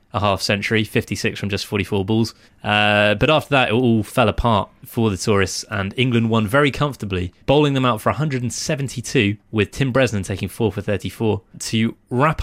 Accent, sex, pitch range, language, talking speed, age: British, male, 105-130 Hz, English, 185 wpm, 20-39